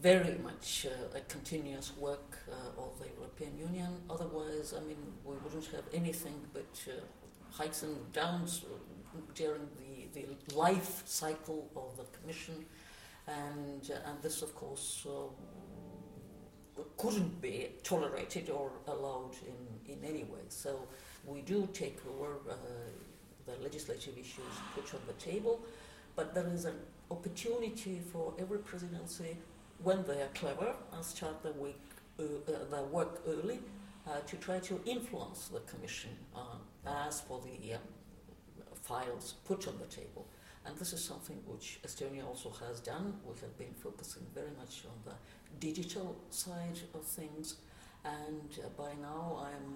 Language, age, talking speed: English, 50-69, 150 wpm